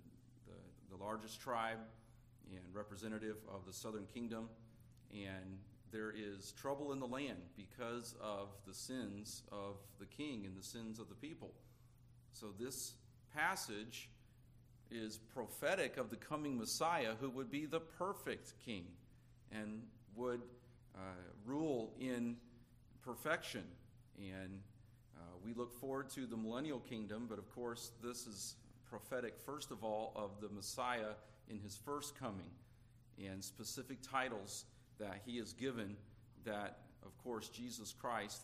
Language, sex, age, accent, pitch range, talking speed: English, male, 40-59, American, 105-125 Hz, 135 wpm